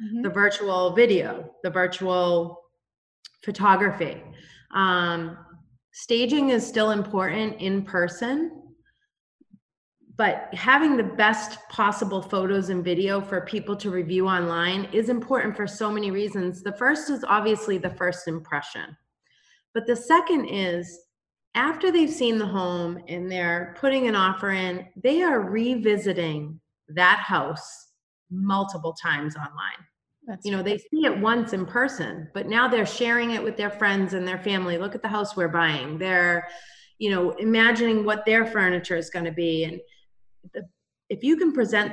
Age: 30-49